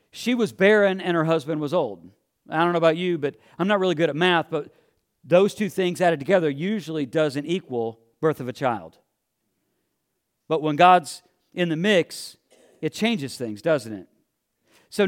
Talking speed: 180 wpm